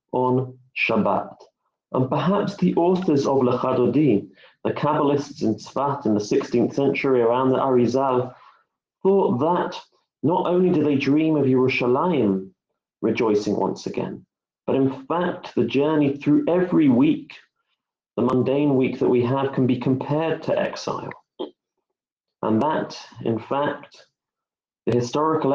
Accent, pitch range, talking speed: British, 110-140 Hz, 130 wpm